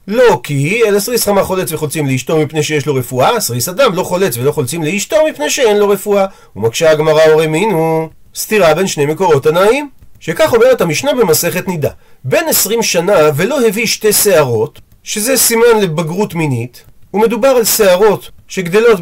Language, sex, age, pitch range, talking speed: Hebrew, male, 40-59, 155-225 Hz, 165 wpm